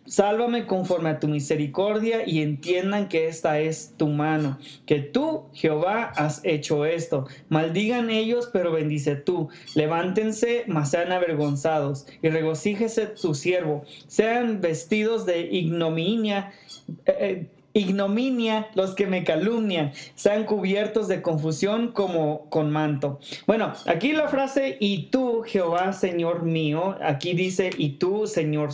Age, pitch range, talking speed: 20-39, 160-205 Hz, 130 wpm